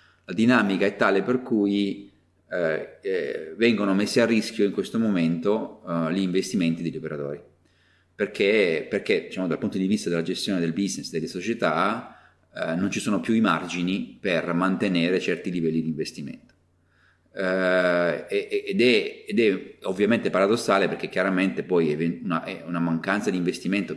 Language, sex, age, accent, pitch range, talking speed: Italian, male, 30-49, native, 85-95 Hz, 155 wpm